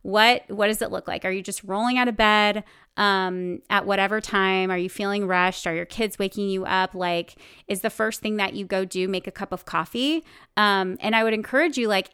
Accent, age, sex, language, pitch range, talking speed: American, 30-49, female, English, 185-215 Hz, 235 wpm